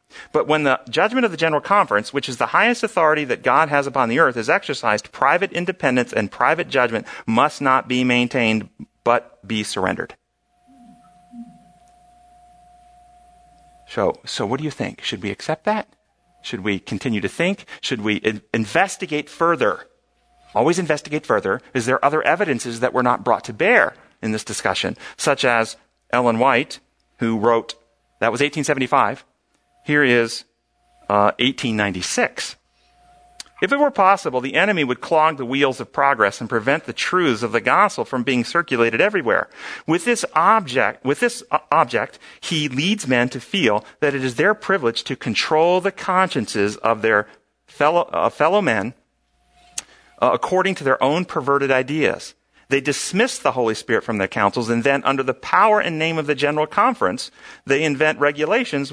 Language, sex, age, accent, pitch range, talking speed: English, male, 40-59, American, 120-195 Hz, 165 wpm